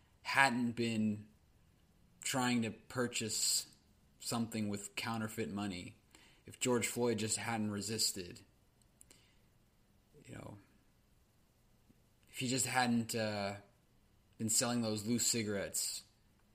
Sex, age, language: male, 20-39, English